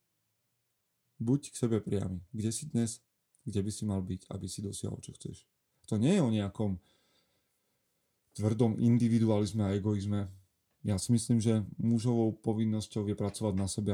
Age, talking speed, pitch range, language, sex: 30-49, 155 wpm, 100-120 Hz, Slovak, male